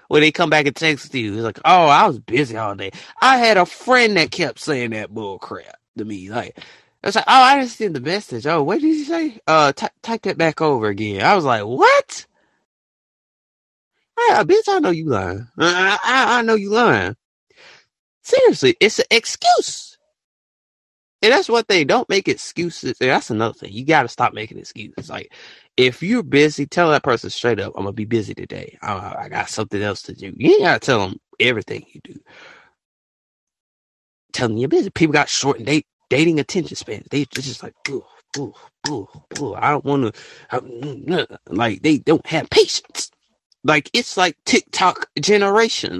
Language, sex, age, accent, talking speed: English, male, 20-39, American, 195 wpm